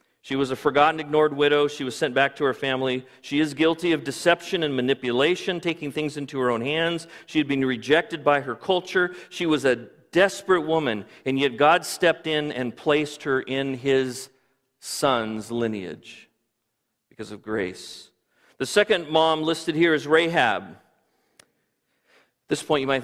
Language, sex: English, male